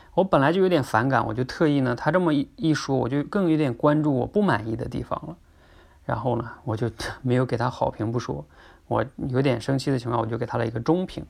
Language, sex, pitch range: Chinese, male, 110-140 Hz